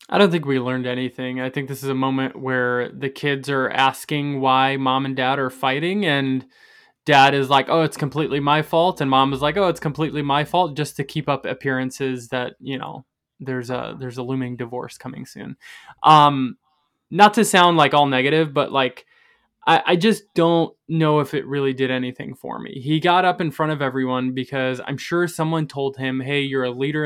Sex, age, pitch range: male, 20-39, 135-165 Hz